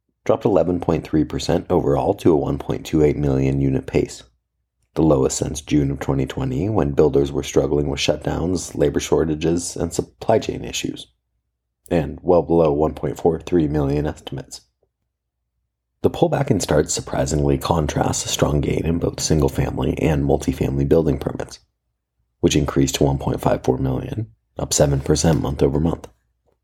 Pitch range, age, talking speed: 65-90 Hz, 30-49, 135 wpm